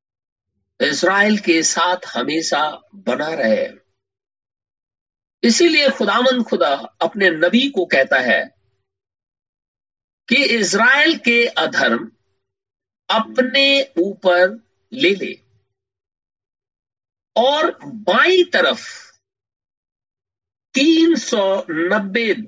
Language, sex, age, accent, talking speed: Hindi, male, 50-69, native, 70 wpm